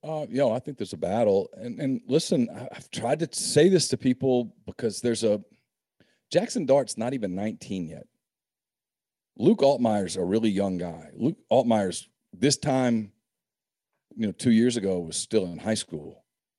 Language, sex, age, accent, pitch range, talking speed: English, male, 40-59, American, 95-135 Hz, 170 wpm